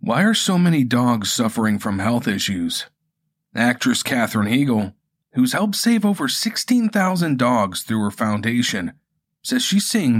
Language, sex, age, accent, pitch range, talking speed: English, male, 40-59, American, 120-175 Hz, 140 wpm